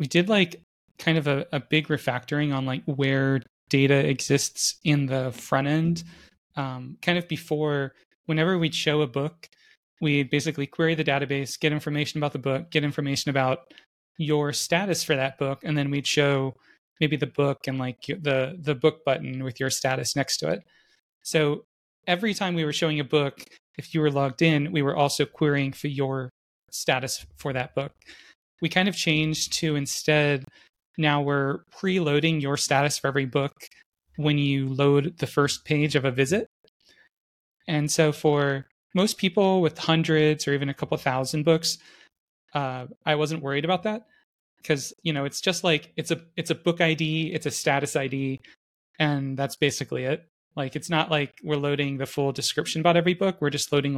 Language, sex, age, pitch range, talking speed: English, male, 30-49, 140-160 Hz, 180 wpm